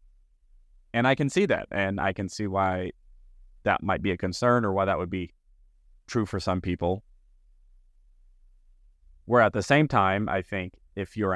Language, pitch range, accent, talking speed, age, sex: English, 90-105 Hz, American, 175 wpm, 30-49, male